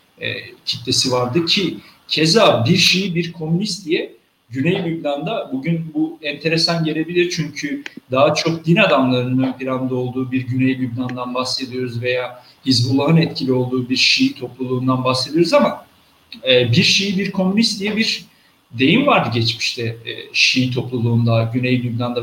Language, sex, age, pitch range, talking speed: Turkish, male, 50-69, 130-175 Hz, 140 wpm